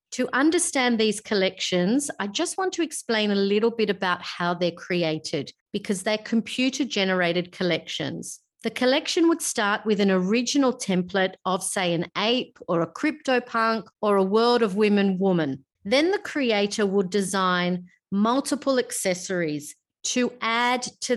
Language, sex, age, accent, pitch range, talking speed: English, female, 40-59, Australian, 185-235 Hz, 145 wpm